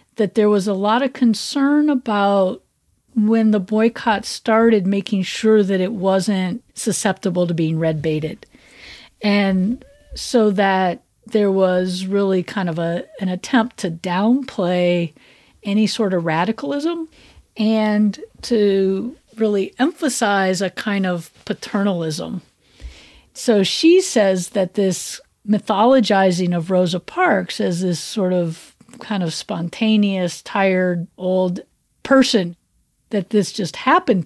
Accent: American